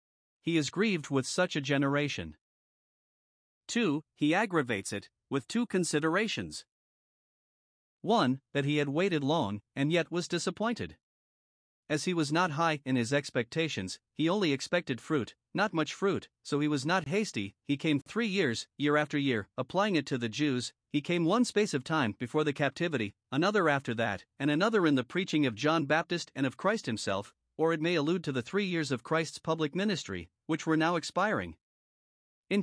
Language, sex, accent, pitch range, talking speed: English, male, American, 135-170 Hz, 180 wpm